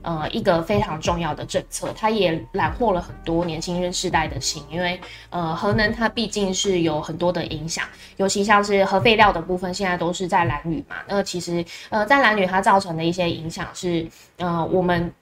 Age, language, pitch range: 20-39, Chinese, 165-195 Hz